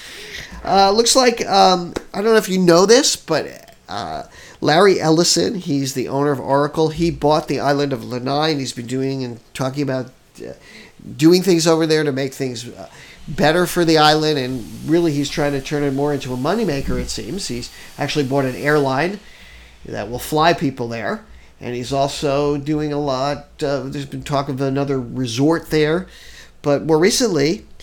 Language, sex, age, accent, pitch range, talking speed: English, male, 50-69, American, 135-160 Hz, 185 wpm